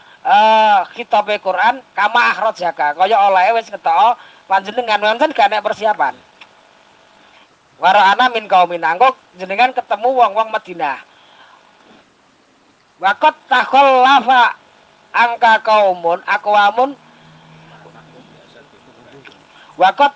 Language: Arabic